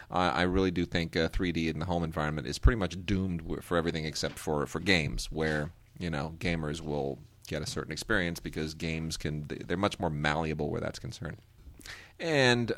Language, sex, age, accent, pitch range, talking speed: English, male, 30-49, American, 85-115 Hz, 195 wpm